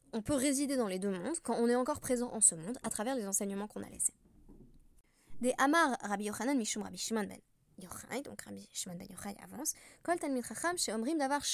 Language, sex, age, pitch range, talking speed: French, female, 20-39, 195-275 Hz, 220 wpm